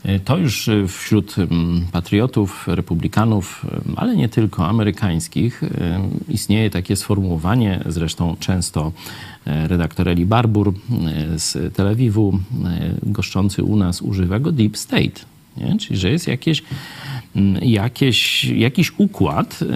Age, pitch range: 40-59, 100-150 Hz